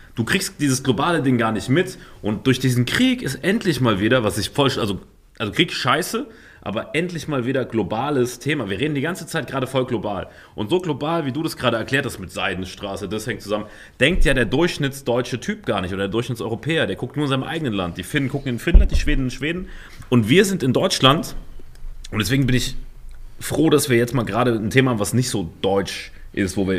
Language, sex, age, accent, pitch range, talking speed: German, male, 30-49, German, 105-145 Hz, 230 wpm